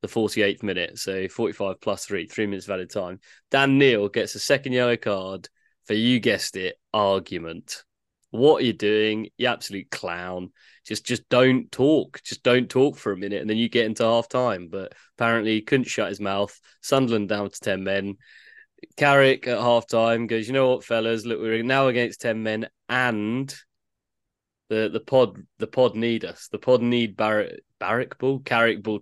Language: English